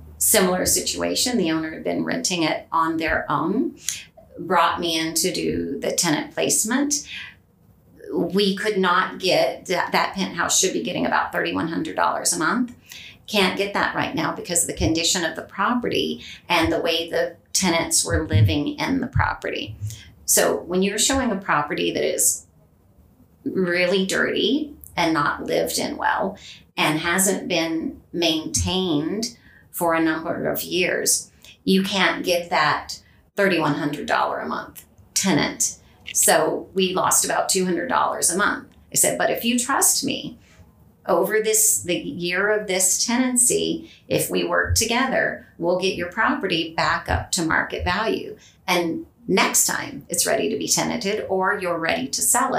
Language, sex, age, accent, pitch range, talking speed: English, female, 40-59, American, 160-200 Hz, 155 wpm